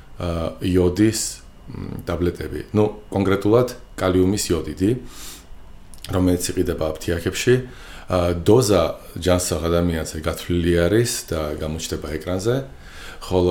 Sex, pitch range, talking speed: male, 80-95 Hz, 95 wpm